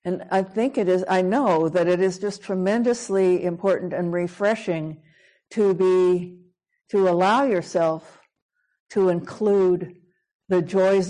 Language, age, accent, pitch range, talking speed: English, 60-79, American, 175-195 Hz, 130 wpm